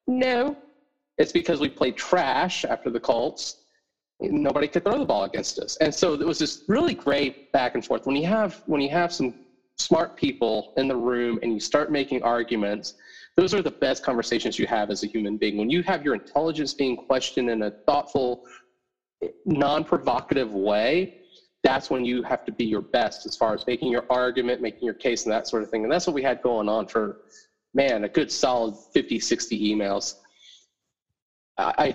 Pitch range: 125-175 Hz